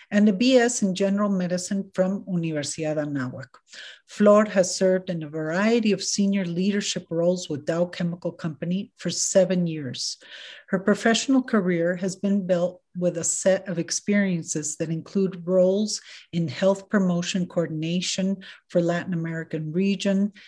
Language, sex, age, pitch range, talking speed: Spanish, female, 50-69, 175-205 Hz, 140 wpm